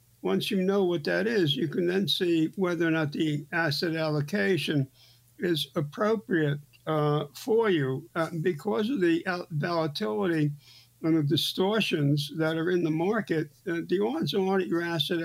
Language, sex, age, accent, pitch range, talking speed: English, male, 60-79, American, 145-180 Hz, 160 wpm